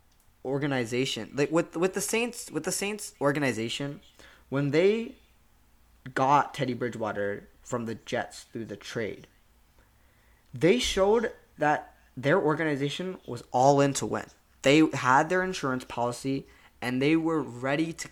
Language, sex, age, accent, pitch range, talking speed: English, male, 20-39, American, 120-155 Hz, 135 wpm